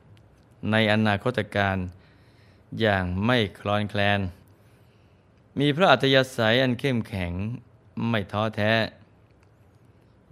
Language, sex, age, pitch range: Thai, male, 20-39, 105-120 Hz